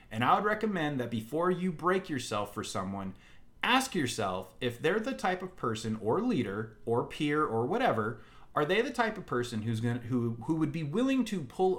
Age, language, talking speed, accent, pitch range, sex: 30-49, English, 205 wpm, American, 120-180 Hz, male